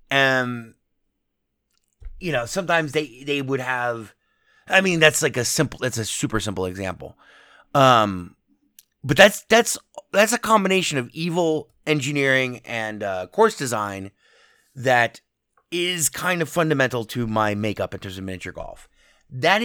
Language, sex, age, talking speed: English, male, 30-49, 145 wpm